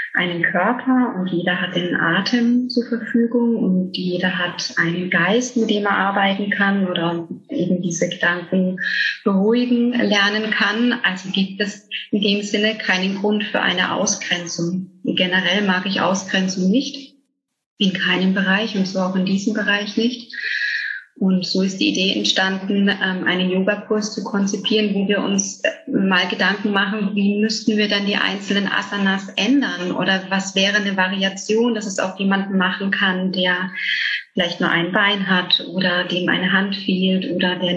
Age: 30-49